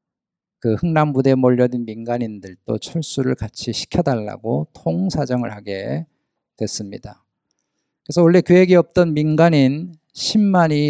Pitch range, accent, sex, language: 120-160 Hz, native, male, Korean